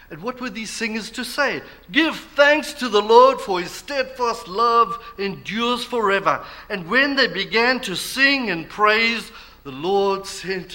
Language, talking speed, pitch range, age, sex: English, 160 wpm, 115-180 Hz, 50-69, male